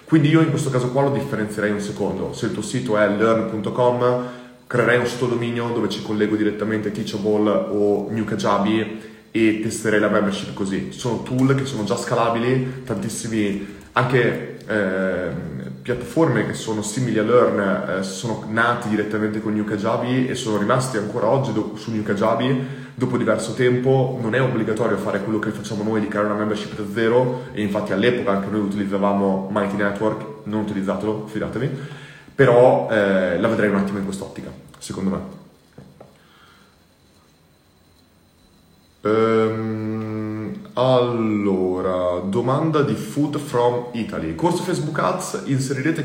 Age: 20-39